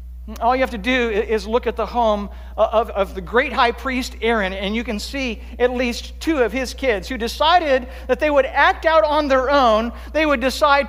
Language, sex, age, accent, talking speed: English, male, 50-69, American, 220 wpm